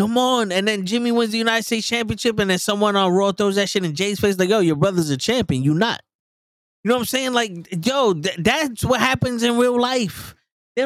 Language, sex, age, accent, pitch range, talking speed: English, male, 20-39, American, 180-230 Hz, 245 wpm